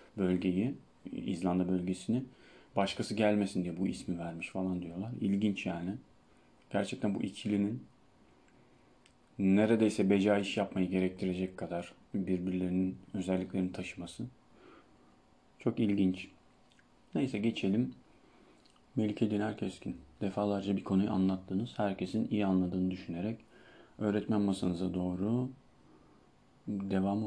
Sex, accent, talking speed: male, native, 95 wpm